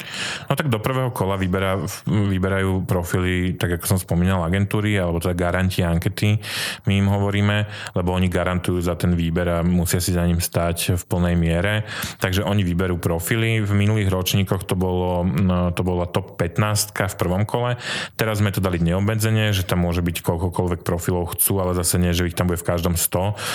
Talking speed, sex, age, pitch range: 190 wpm, male, 30-49, 90-105 Hz